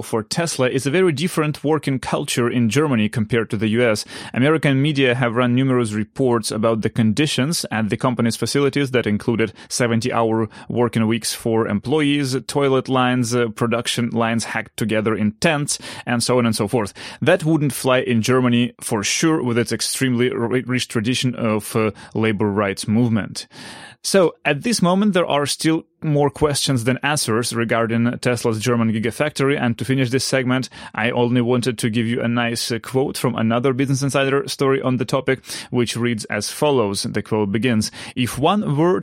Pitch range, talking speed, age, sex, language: 115-140 Hz, 175 wpm, 30-49, male, English